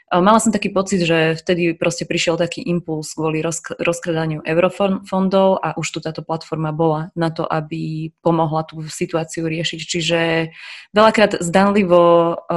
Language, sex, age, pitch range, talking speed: Slovak, female, 20-39, 160-180 Hz, 135 wpm